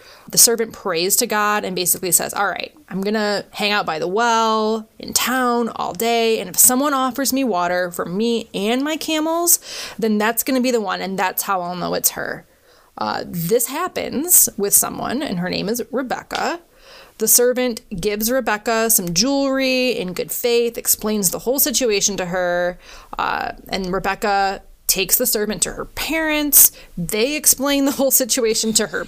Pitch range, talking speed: 195-260 Hz, 180 wpm